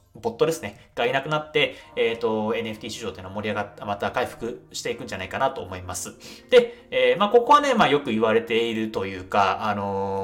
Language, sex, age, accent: Japanese, male, 20-39, native